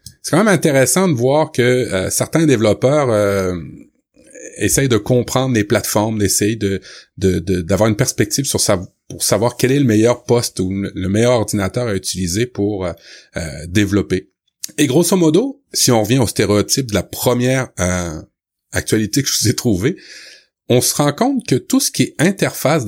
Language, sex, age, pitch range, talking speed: French, male, 30-49, 100-135 Hz, 180 wpm